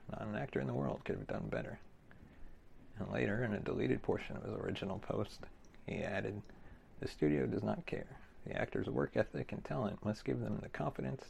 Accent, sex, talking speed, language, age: American, male, 200 wpm, English, 40-59